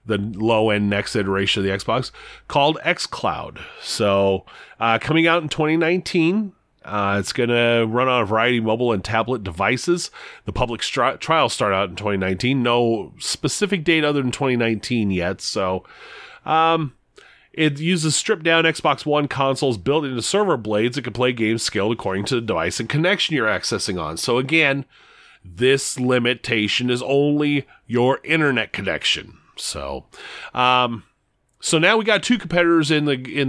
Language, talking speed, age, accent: English, 160 wpm, 30-49, American